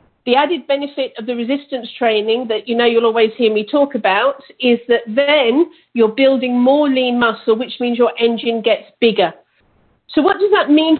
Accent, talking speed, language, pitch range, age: British, 190 wpm, English, 225-270 Hz, 50-69